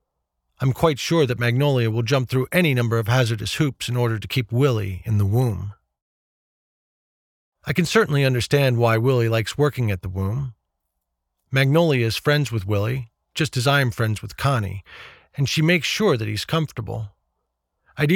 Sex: male